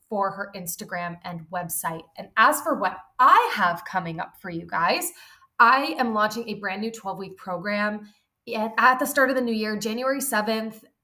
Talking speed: 185 wpm